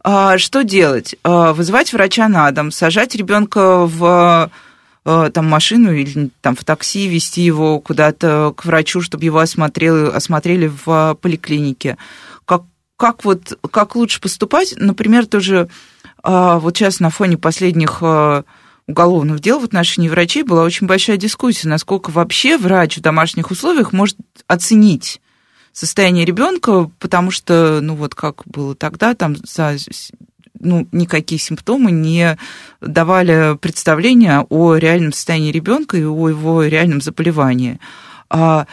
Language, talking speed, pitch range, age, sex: Russian, 125 wpm, 155-195 Hz, 20-39, female